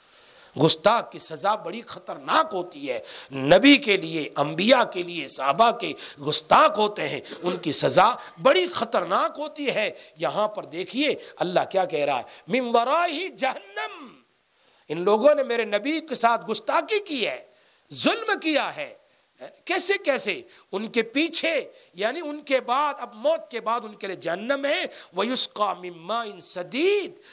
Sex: male